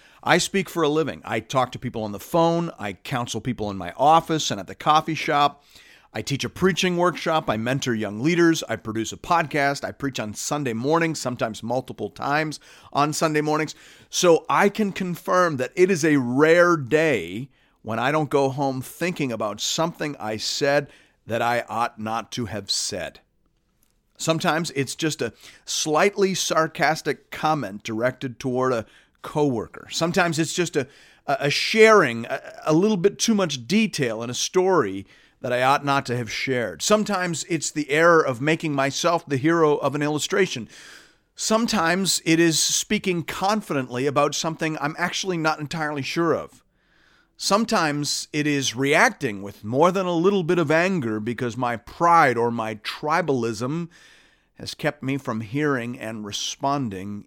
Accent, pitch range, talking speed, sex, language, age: American, 125-170 Hz, 165 wpm, male, English, 40-59